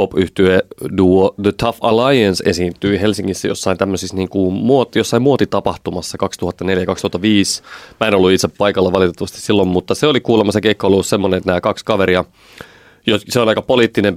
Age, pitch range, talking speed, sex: 30-49, 95-110 Hz, 145 wpm, male